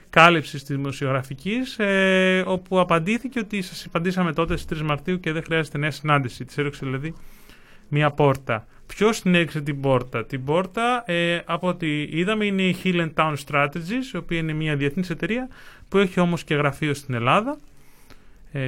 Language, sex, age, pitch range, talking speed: Greek, male, 30-49, 150-185 Hz, 175 wpm